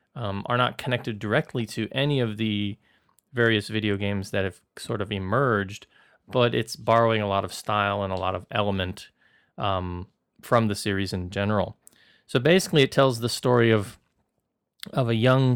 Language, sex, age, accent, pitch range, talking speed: English, male, 30-49, American, 100-125 Hz, 175 wpm